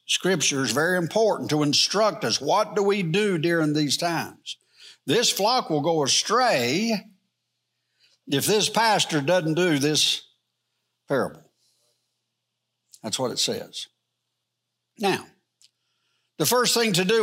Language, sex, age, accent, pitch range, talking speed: English, male, 60-79, American, 145-205 Hz, 125 wpm